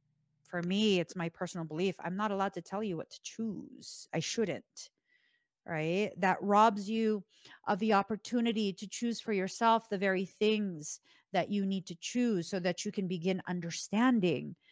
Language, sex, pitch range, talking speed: English, female, 170-210 Hz, 170 wpm